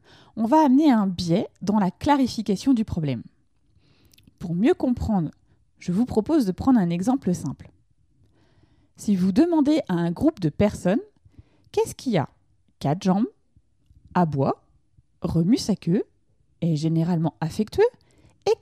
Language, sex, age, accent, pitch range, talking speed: French, female, 30-49, French, 170-255 Hz, 140 wpm